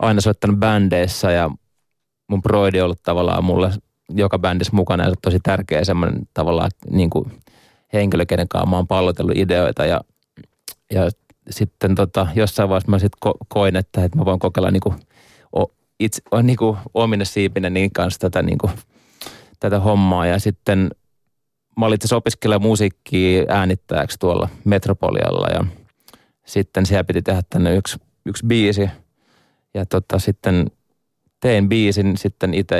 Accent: native